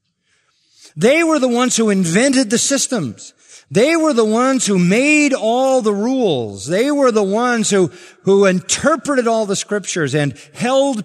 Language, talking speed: English, 160 wpm